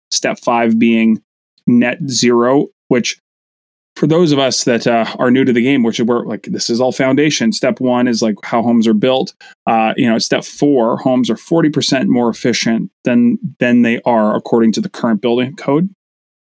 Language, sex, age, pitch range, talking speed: English, male, 30-49, 120-155 Hz, 195 wpm